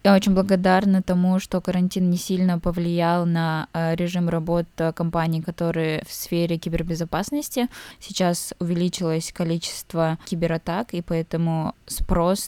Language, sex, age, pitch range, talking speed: Russian, female, 20-39, 170-190 Hz, 115 wpm